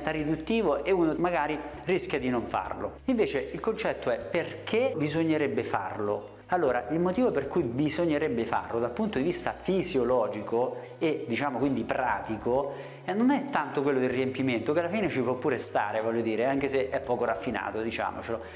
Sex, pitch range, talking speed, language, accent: male, 125-185 Hz, 170 wpm, Italian, native